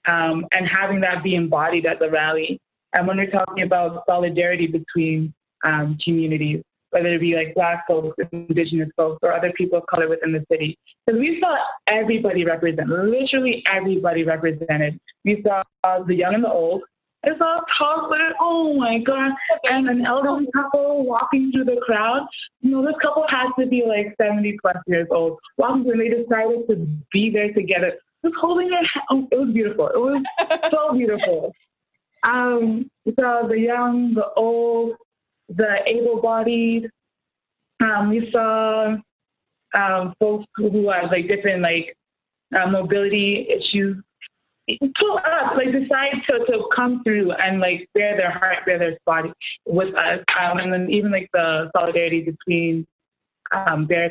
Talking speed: 160 wpm